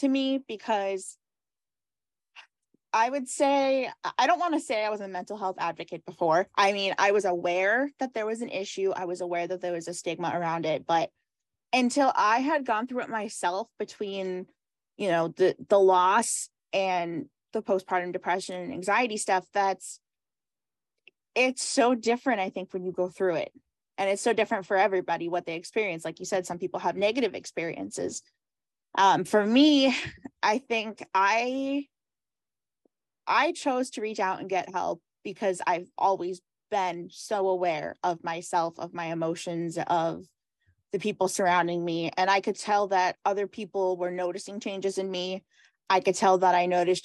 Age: 20-39